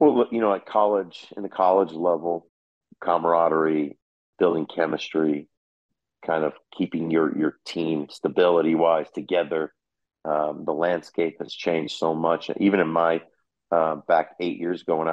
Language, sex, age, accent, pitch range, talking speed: English, male, 40-59, American, 80-90 Hz, 145 wpm